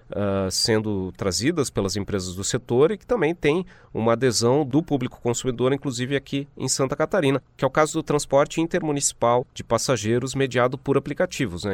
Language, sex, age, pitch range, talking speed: Portuguese, male, 30-49, 110-145 Hz, 175 wpm